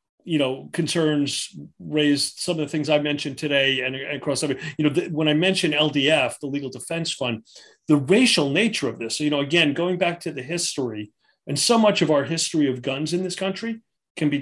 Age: 40-59